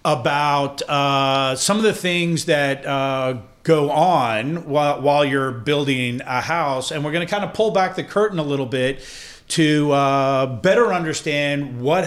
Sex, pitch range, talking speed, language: male, 125-155 Hz, 170 wpm, English